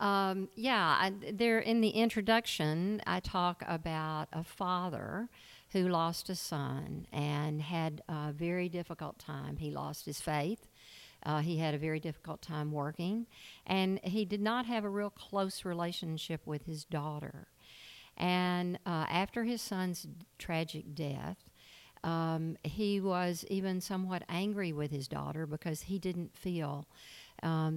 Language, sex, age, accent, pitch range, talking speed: English, female, 50-69, American, 150-185 Hz, 145 wpm